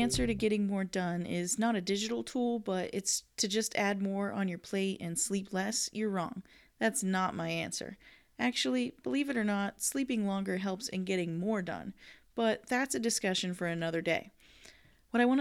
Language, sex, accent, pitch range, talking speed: English, female, American, 185-235 Hz, 195 wpm